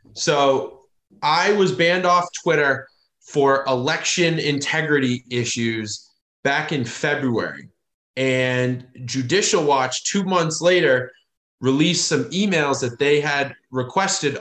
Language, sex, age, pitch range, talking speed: English, male, 30-49, 130-175 Hz, 110 wpm